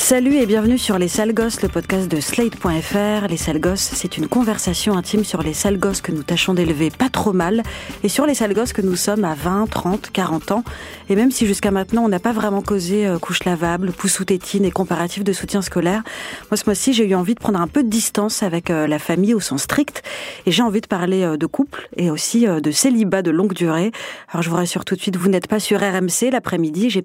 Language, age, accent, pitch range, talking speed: French, 40-59, French, 175-220 Hz, 240 wpm